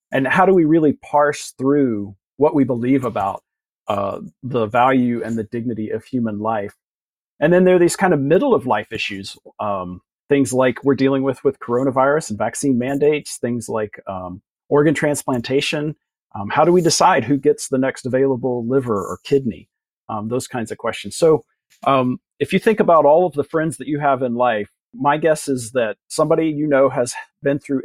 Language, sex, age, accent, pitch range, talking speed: English, male, 40-59, American, 120-145 Hz, 195 wpm